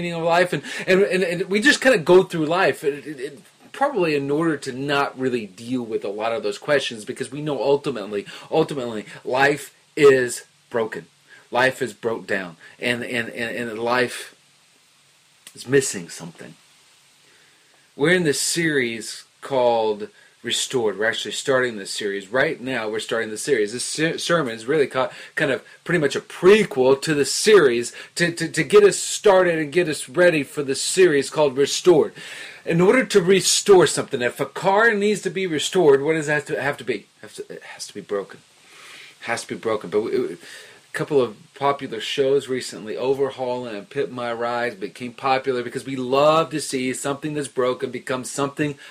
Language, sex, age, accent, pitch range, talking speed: English, male, 30-49, American, 130-190 Hz, 190 wpm